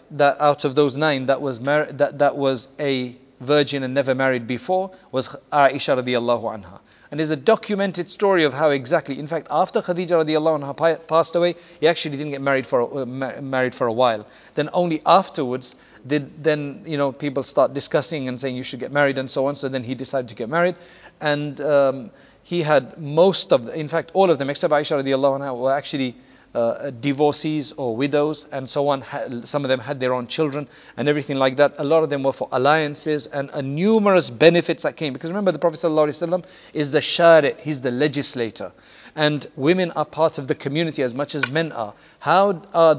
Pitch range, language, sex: 140-165 Hz, English, male